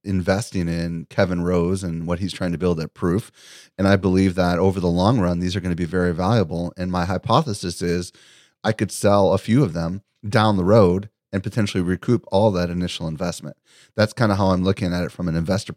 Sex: male